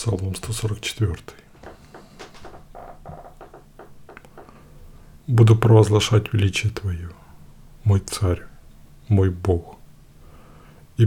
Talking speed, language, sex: 60 wpm, Russian, male